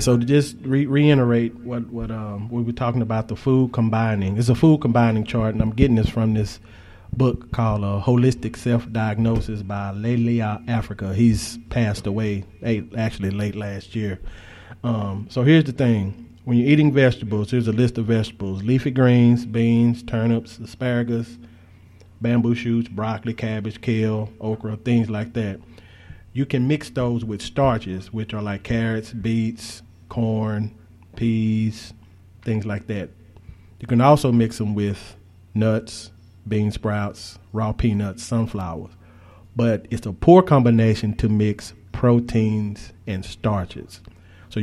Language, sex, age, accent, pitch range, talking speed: English, male, 30-49, American, 100-120 Hz, 145 wpm